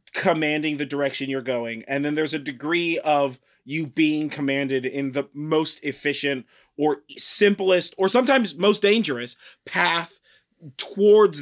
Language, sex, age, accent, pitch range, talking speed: English, male, 30-49, American, 135-175 Hz, 135 wpm